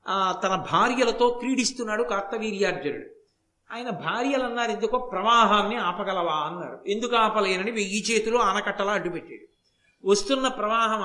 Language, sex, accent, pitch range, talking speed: Telugu, male, native, 180-230 Hz, 115 wpm